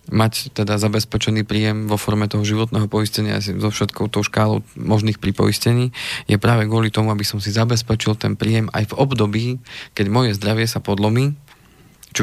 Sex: male